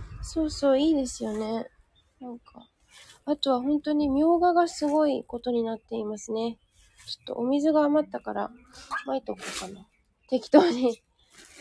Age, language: 20-39, Japanese